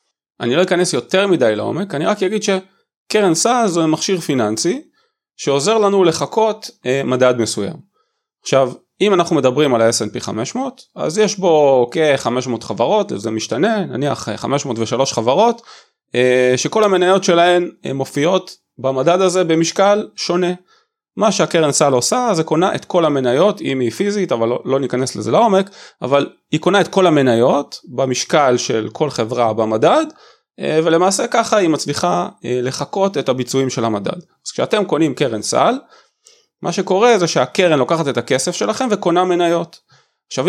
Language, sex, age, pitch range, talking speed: Hebrew, male, 30-49, 125-195 Hz, 145 wpm